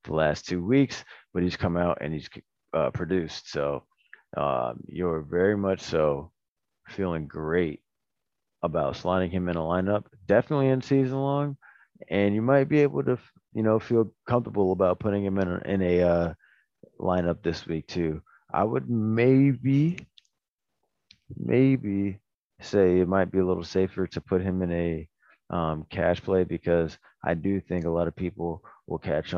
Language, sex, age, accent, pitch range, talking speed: English, male, 30-49, American, 80-105 Hz, 165 wpm